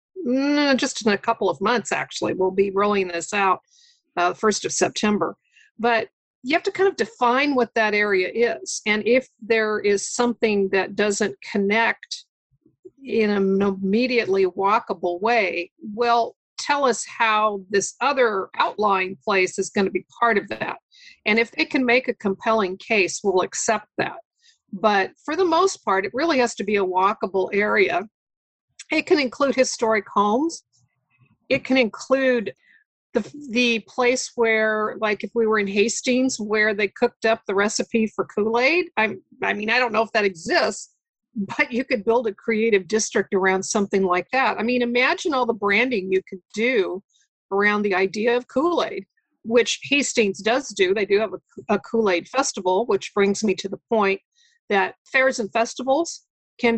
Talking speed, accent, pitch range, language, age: 170 wpm, American, 200-255 Hz, English, 50-69